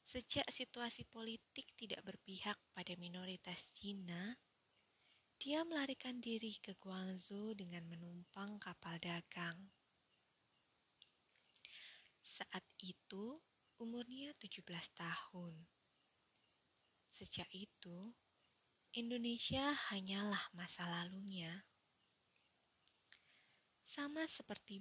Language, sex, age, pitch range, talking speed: Indonesian, female, 20-39, 180-230 Hz, 75 wpm